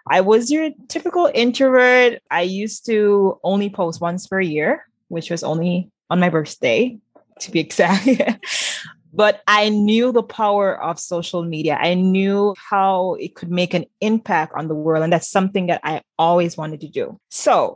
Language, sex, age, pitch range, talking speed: English, female, 20-39, 170-220 Hz, 170 wpm